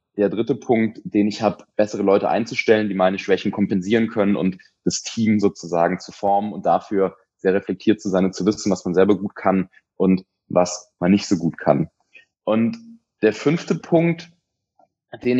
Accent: German